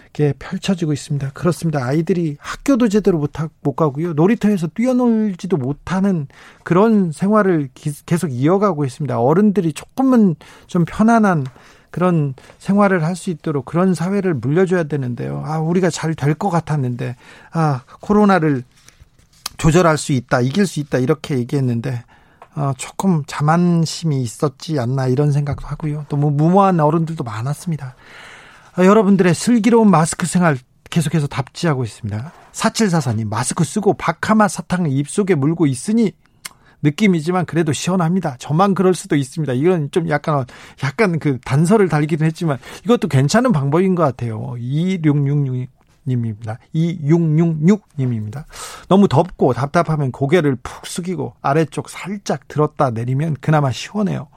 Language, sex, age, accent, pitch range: Korean, male, 40-59, native, 140-185 Hz